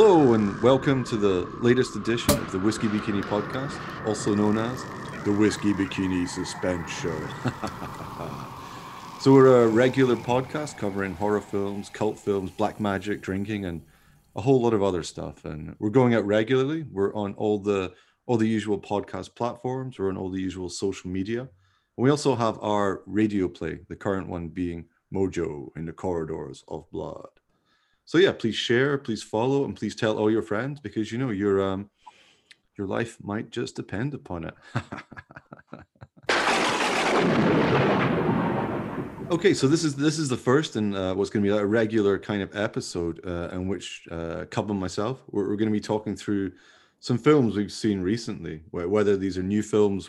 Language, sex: English, male